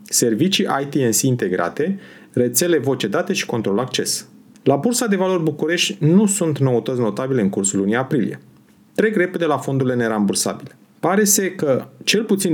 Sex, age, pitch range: male, 30-49, 115-170 Hz